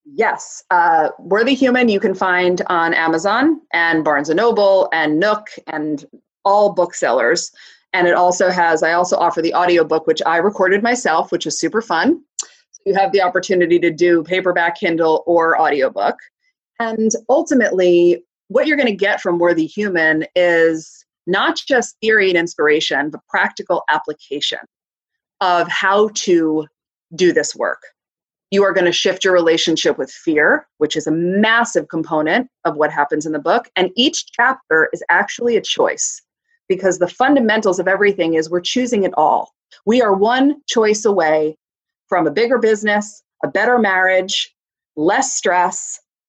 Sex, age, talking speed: female, 30-49, 155 wpm